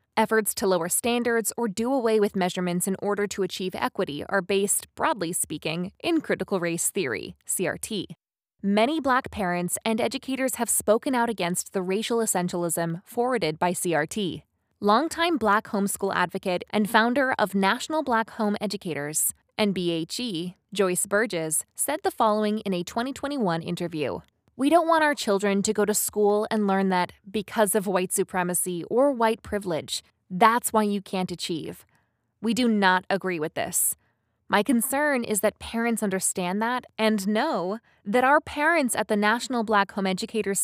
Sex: female